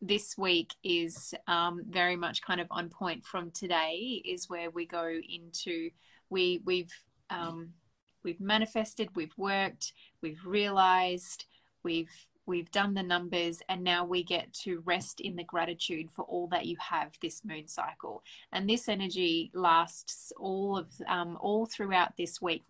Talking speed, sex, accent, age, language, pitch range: 155 wpm, female, Australian, 20-39, English, 175-210 Hz